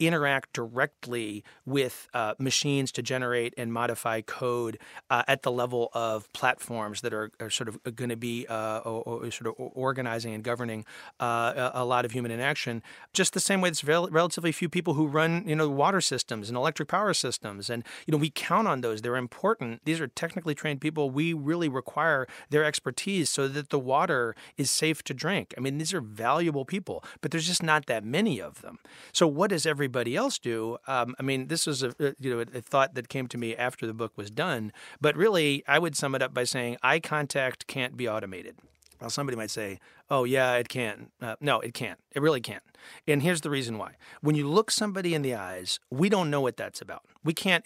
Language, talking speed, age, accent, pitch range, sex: English, 215 wpm, 30-49, American, 120-155 Hz, male